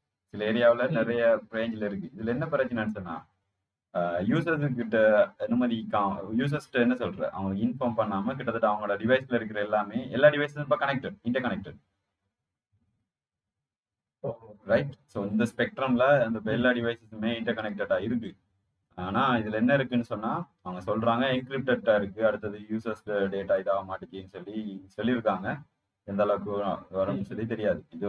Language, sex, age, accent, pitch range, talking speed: Tamil, male, 30-49, native, 100-125 Hz, 35 wpm